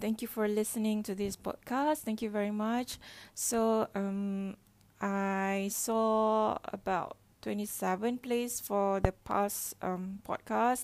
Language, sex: English, female